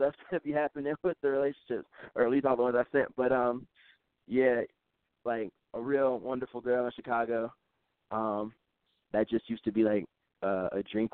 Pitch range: 100-115 Hz